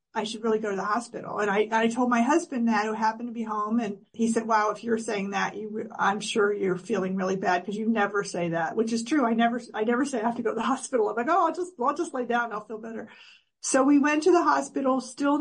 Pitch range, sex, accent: 215-245 Hz, female, American